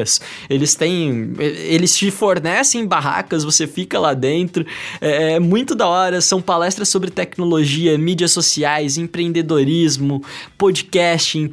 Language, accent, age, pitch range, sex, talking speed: Portuguese, Brazilian, 20-39, 160-200 Hz, male, 110 wpm